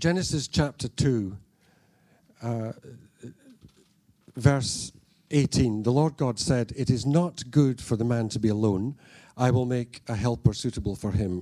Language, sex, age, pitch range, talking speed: English, male, 50-69, 105-145 Hz, 140 wpm